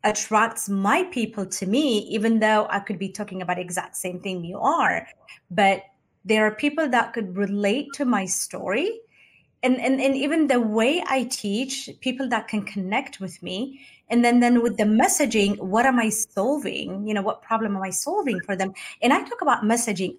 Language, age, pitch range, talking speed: English, 30-49, 185-230 Hz, 195 wpm